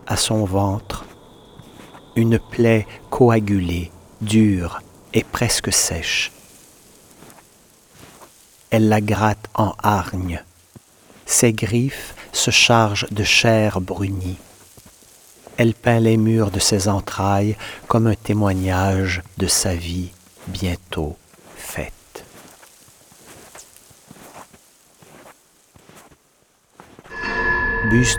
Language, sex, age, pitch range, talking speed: French, male, 60-79, 85-110 Hz, 80 wpm